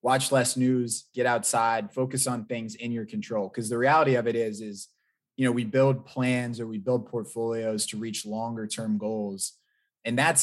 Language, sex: English, male